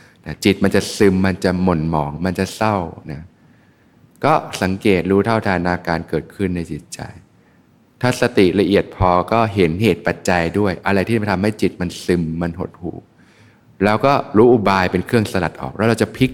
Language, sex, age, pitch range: Thai, male, 20-39, 90-110 Hz